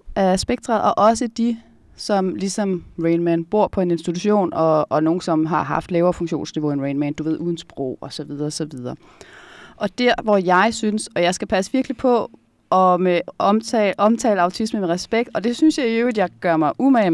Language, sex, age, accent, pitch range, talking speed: Danish, female, 20-39, native, 175-235 Hz, 205 wpm